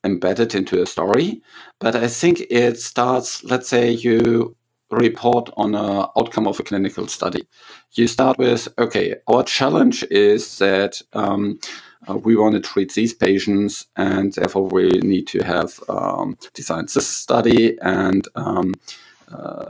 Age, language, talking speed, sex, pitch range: 50-69, English, 145 wpm, male, 100-120 Hz